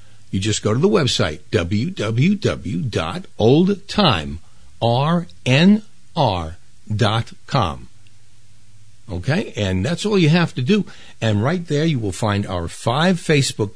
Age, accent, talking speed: 60-79, American, 105 wpm